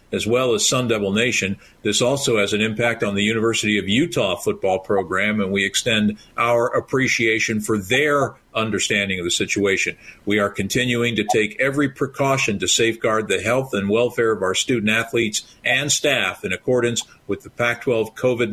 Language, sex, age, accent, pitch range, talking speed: English, male, 50-69, American, 110-125 Hz, 175 wpm